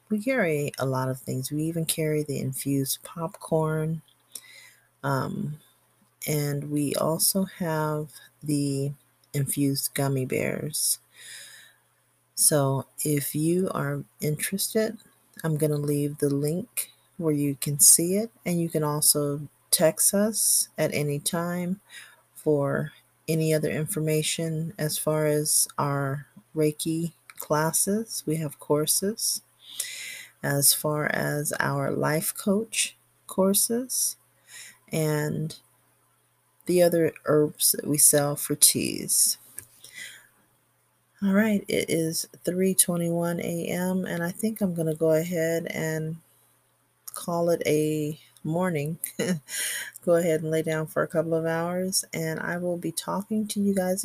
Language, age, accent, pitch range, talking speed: English, 40-59, American, 150-180 Hz, 120 wpm